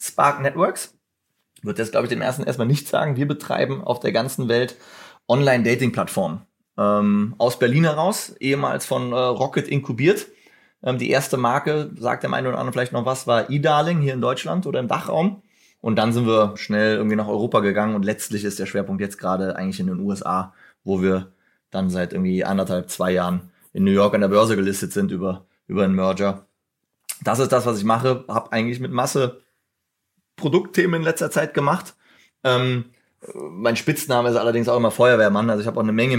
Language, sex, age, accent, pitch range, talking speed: German, male, 30-49, German, 100-130 Hz, 190 wpm